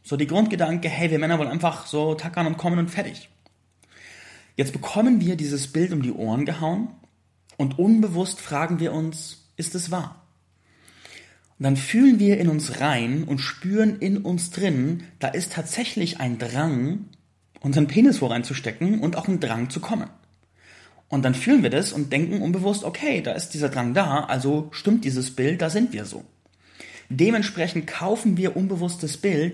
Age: 30-49